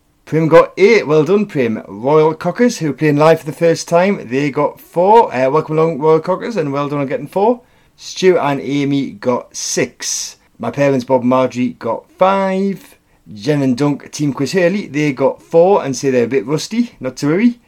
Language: English